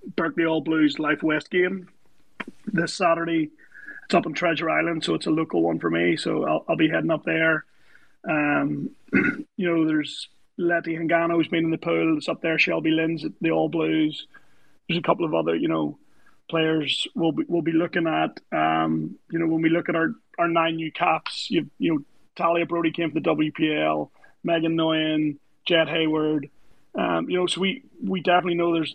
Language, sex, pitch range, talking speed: English, male, 155-170 Hz, 195 wpm